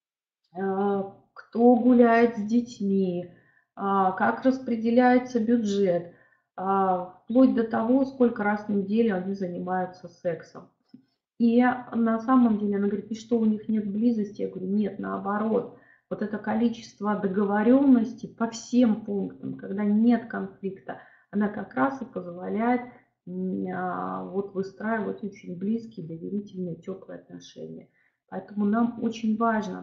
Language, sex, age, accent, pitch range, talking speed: Russian, female, 30-49, native, 190-235 Hz, 120 wpm